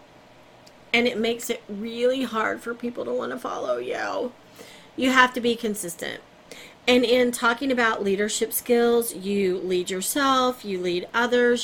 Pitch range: 190-240 Hz